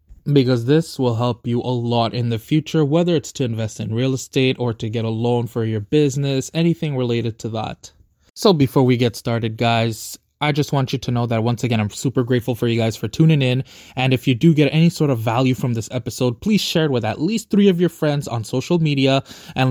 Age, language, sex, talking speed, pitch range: 20-39, English, male, 240 wpm, 115-150 Hz